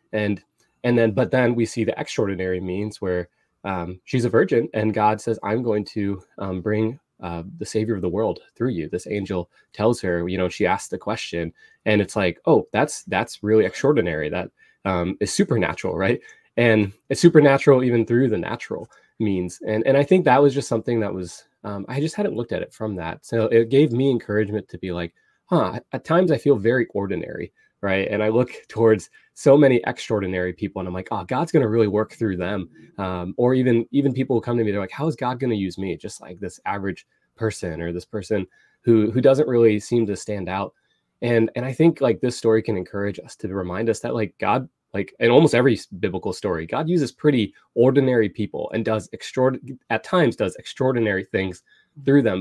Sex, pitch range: male, 95-125 Hz